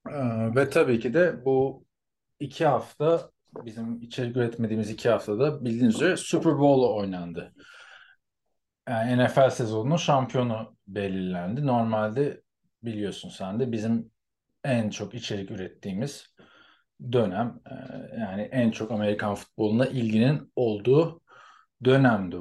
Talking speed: 105 wpm